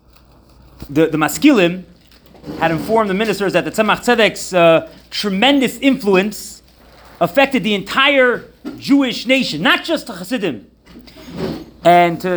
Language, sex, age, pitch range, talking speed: English, male, 30-49, 160-230 Hz, 120 wpm